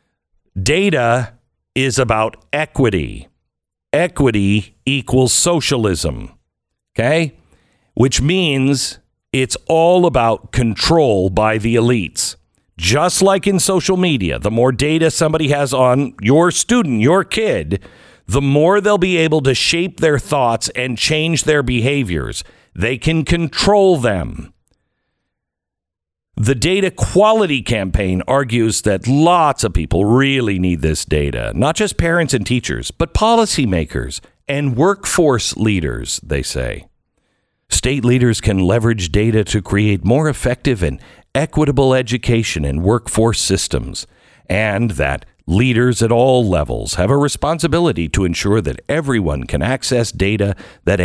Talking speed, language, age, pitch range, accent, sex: 125 wpm, English, 50-69, 100-150 Hz, American, male